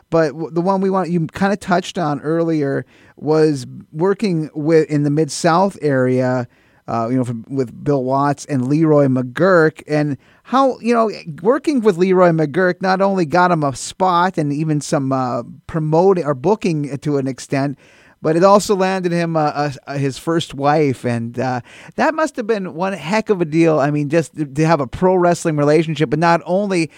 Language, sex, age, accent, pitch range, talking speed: English, male, 30-49, American, 145-175 Hz, 185 wpm